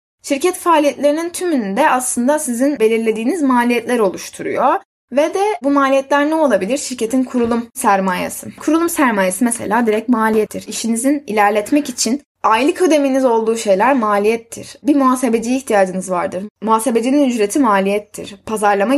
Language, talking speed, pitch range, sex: Turkish, 125 wpm, 205-260 Hz, female